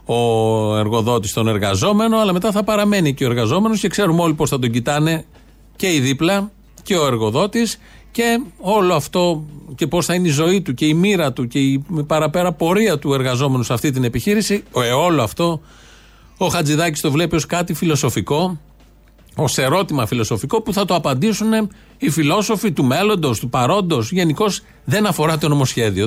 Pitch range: 130-180 Hz